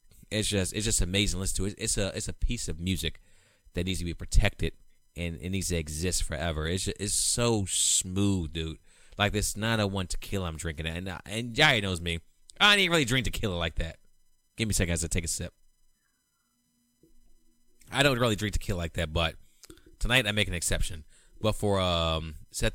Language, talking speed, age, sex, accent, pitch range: English, 220 wpm, 30-49, male, American, 85-110 Hz